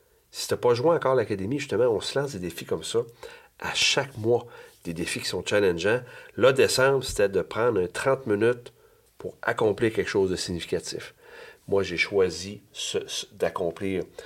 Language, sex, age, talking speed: French, male, 40-59, 180 wpm